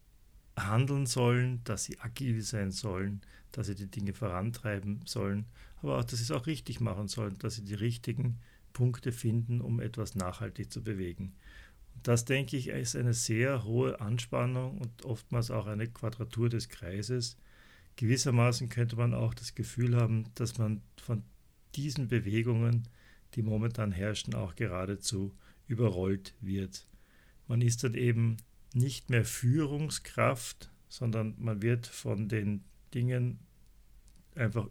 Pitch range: 105-120 Hz